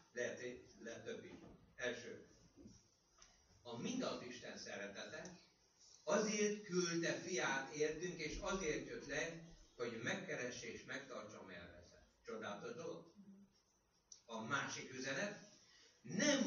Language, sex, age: Hungarian, male, 60-79